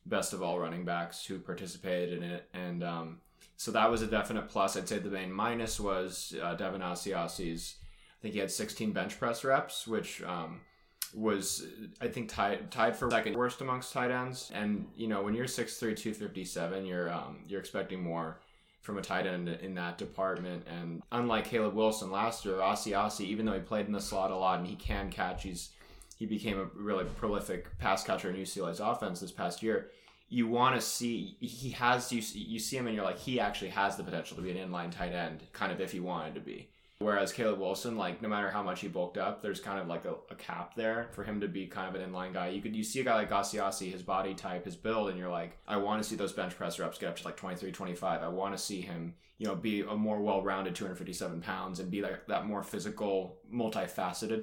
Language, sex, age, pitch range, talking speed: English, male, 20-39, 90-110 Hz, 230 wpm